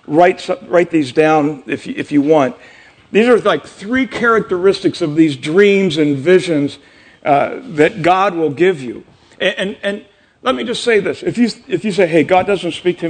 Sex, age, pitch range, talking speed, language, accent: male, 50-69, 170-230 Hz, 185 wpm, English, American